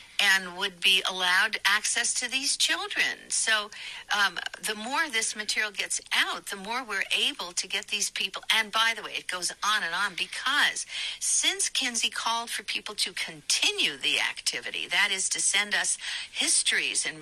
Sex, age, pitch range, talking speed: female, 60-79, 190-270 Hz, 175 wpm